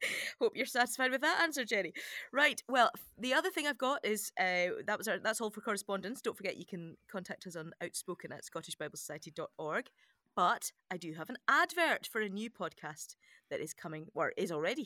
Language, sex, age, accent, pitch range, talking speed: English, female, 30-49, British, 165-245 Hz, 200 wpm